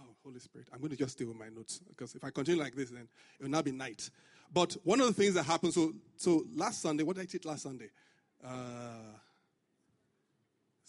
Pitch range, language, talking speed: 135-175 Hz, English, 220 wpm